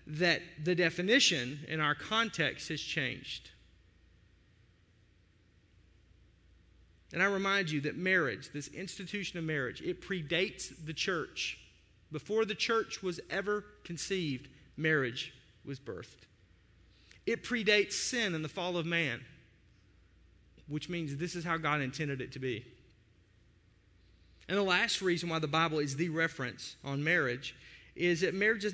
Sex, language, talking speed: male, English, 135 wpm